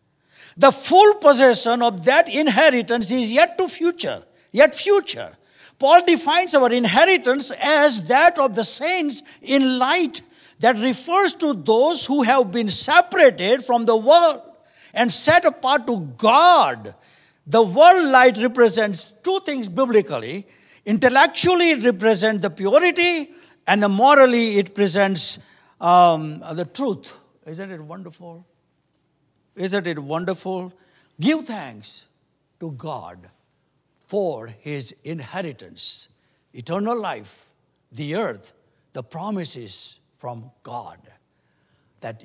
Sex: male